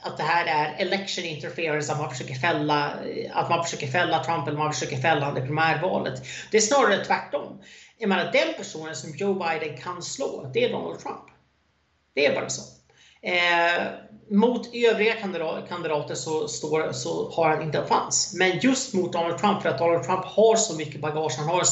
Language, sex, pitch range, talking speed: Swedish, male, 160-210 Hz, 180 wpm